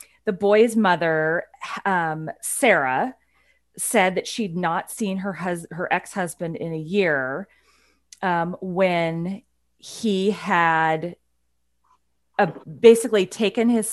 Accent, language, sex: American, English, female